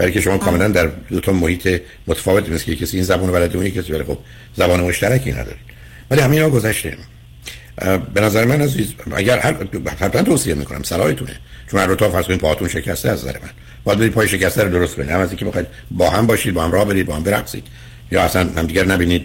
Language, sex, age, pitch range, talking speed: Persian, male, 60-79, 75-105 Hz, 205 wpm